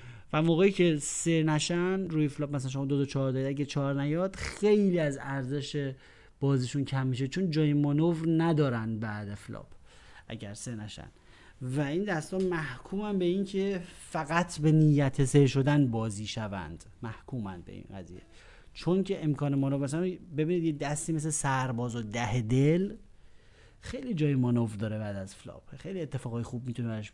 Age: 30-49